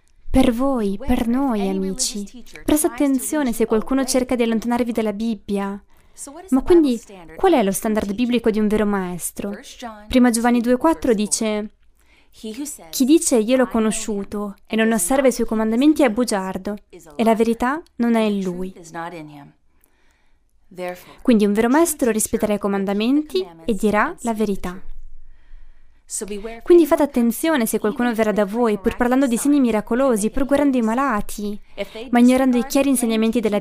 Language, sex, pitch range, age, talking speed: Italian, female, 200-255 Hz, 20-39, 150 wpm